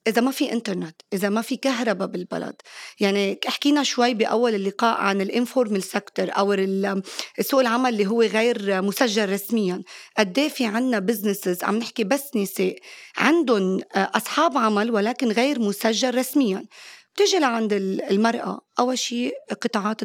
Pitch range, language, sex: 200-255 Hz, English, female